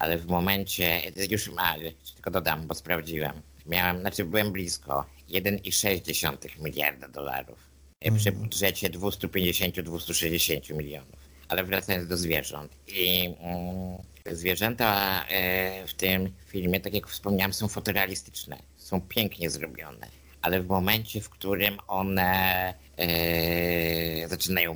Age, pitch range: 50-69, 85-100 Hz